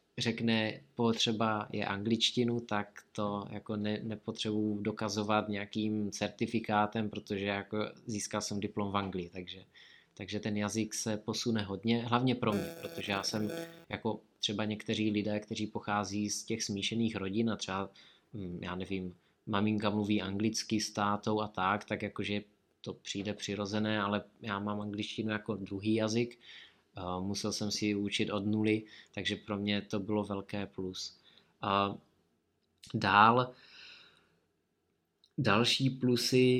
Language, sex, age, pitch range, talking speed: Czech, male, 20-39, 100-110 Hz, 130 wpm